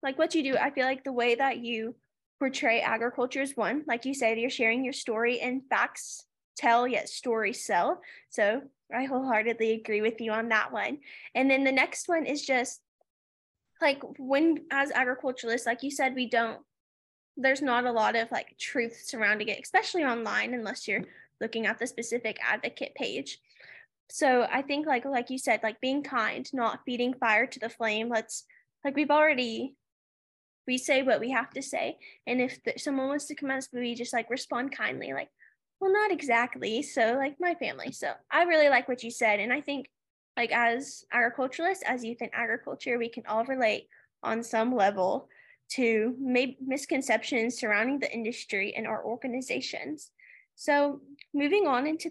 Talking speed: 180 wpm